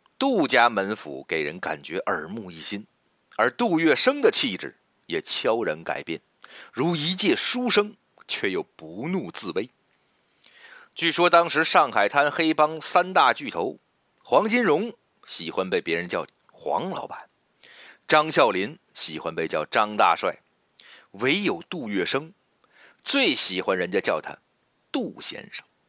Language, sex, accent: Chinese, male, native